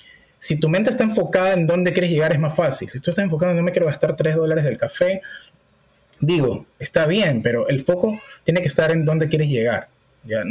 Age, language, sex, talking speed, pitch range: 30-49, Spanish, male, 225 wpm, 135-175 Hz